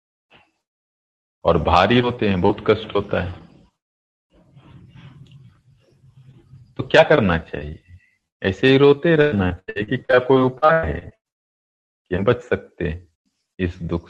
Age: 50-69